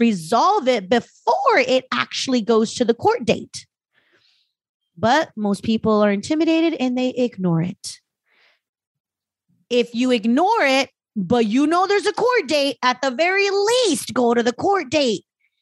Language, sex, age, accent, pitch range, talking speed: English, female, 30-49, American, 220-330 Hz, 150 wpm